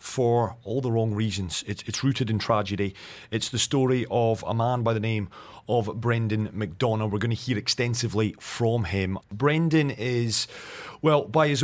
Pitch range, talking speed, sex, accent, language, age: 105-125 Hz, 175 wpm, male, British, English, 30-49